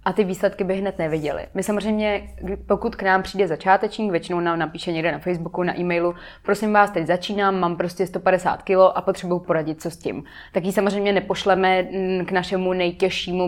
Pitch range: 170-195 Hz